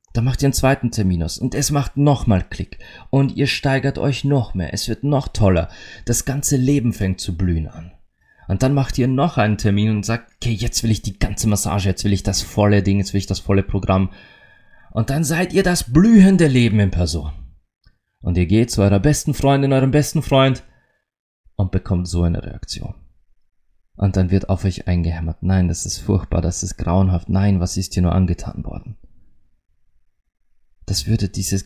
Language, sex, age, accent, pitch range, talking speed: German, male, 30-49, German, 90-115 Hz, 195 wpm